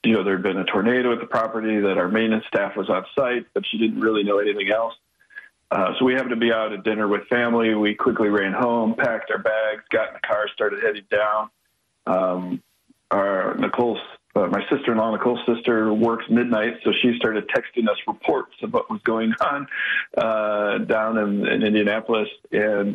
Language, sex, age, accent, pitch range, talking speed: English, male, 40-59, American, 105-125 Hz, 200 wpm